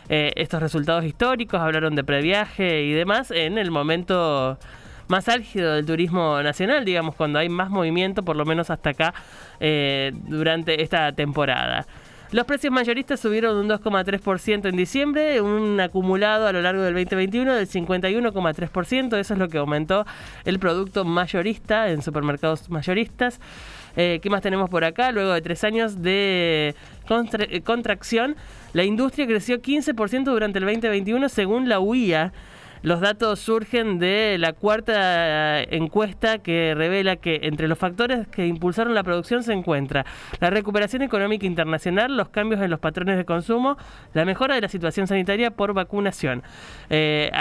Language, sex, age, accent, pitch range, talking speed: Spanish, male, 20-39, Argentinian, 160-215 Hz, 150 wpm